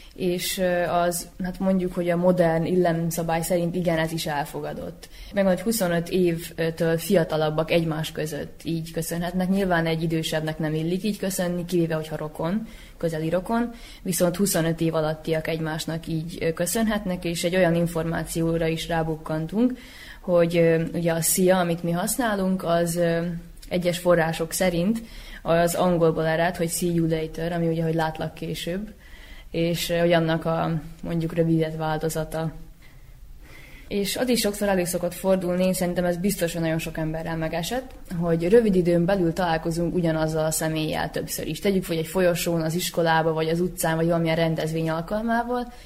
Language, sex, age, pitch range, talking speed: Hungarian, female, 20-39, 165-185 Hz, 145 wpm